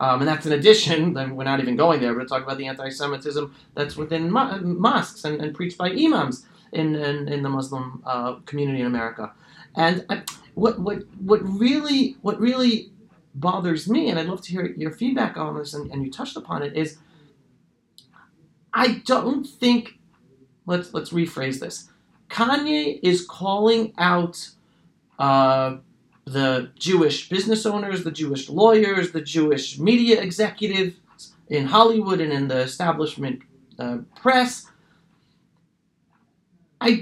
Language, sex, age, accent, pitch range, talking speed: English, male, 30-49, American, 160-235 Hz, 150 wpm